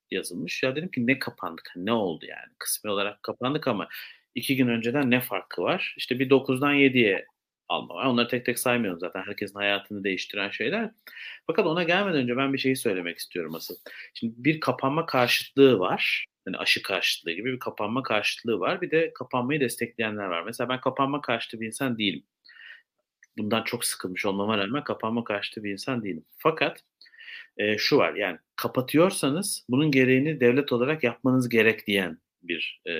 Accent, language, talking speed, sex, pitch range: native, Turkish, 165 wpm, male, 100-140 Hz